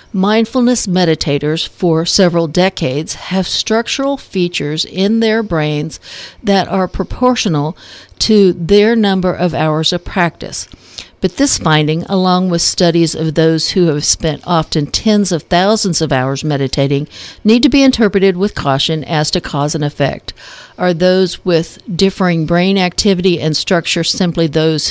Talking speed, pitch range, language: 145 wpm, 160-205 Hz, English